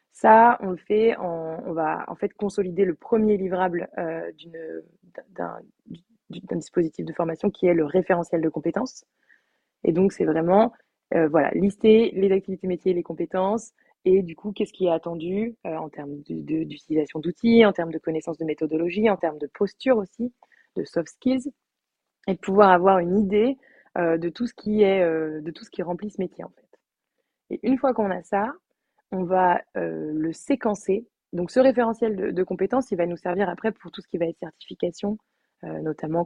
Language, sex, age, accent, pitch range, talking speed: French, female, 20-39, French, 165-210 Hz, 195 wpm